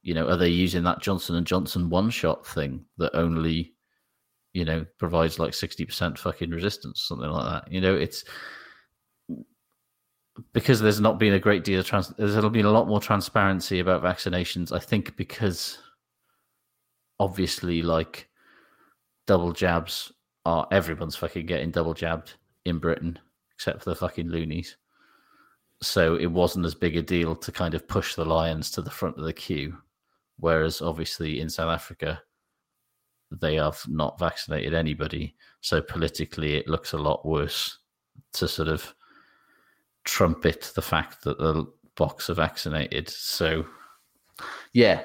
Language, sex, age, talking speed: English, male, 30-49, 150 wpm